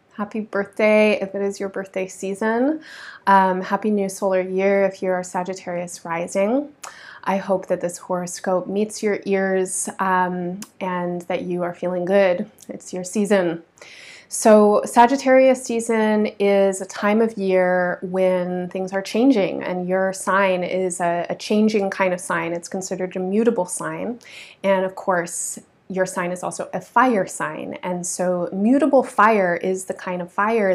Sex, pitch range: female, 185-215 Hz